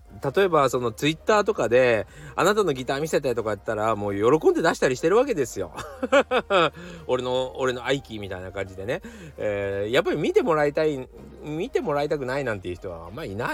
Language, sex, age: Japanese, male, 40-59